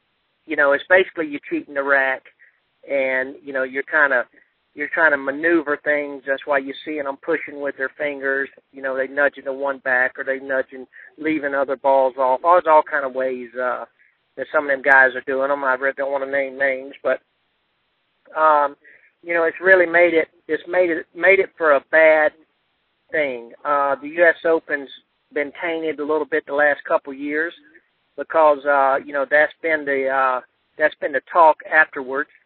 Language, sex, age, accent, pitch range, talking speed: English, male, 40-59, American, 135-155 Hz, 195 wpm